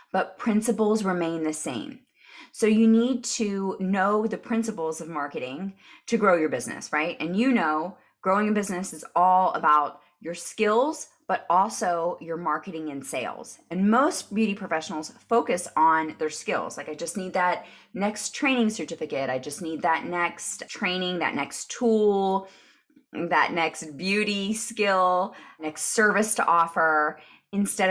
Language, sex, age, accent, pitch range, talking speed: English, female, 20-39, American, 160-220 Hz, 150 wpm